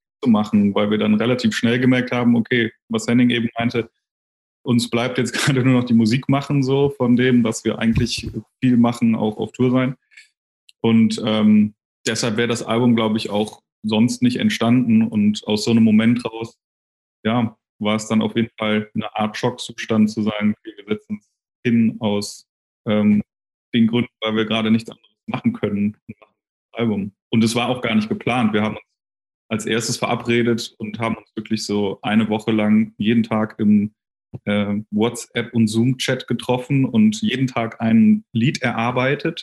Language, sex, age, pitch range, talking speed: German, male, 20-39, 110-125 Hz, 180 wpm